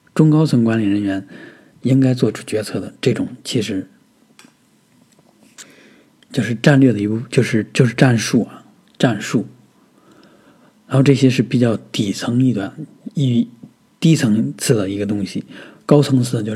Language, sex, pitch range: Chinese, male, 110-140 Hz